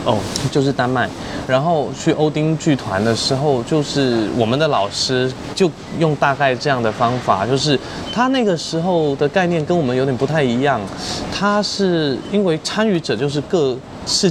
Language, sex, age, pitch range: Chinese, male, 20-39, 115-155 Hz